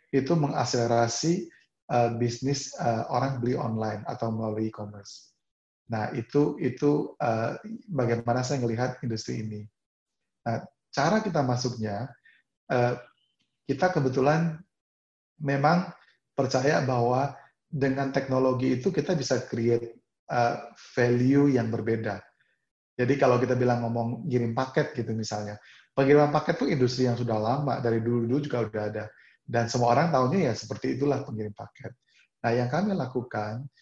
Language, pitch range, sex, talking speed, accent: Indonesian, 115-140 Hz, male, 130 wpm, native